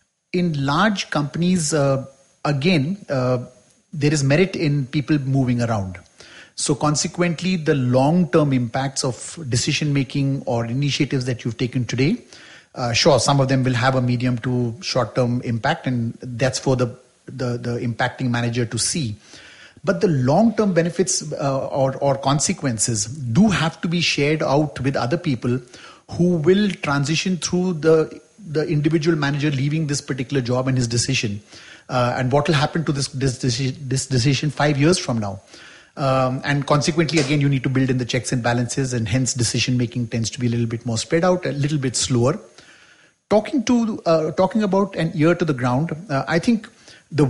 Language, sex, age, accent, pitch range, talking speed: English, male, 30-49, Indian, 125-160 Hz, 170 wpm